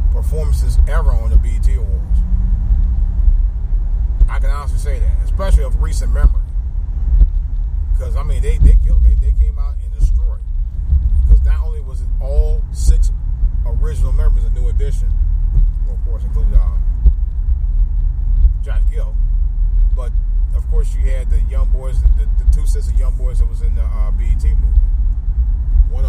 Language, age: English, 30-49